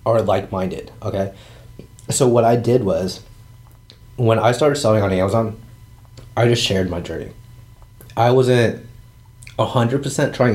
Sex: male